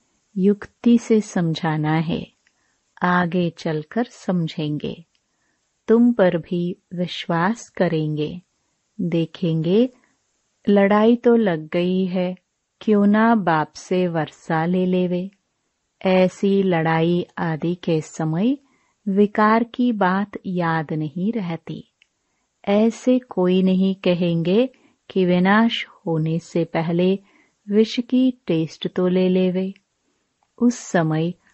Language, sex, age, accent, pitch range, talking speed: Hindi, female, 30-49, native, 165-220 Hz, 100 wpm